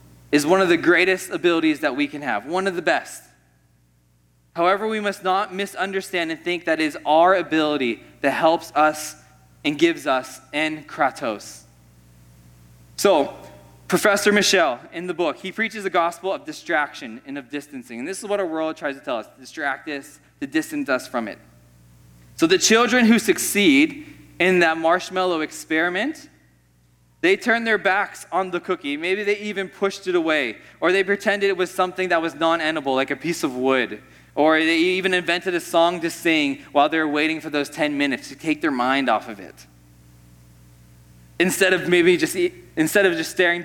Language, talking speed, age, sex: English, 185 wpm, 20-39, male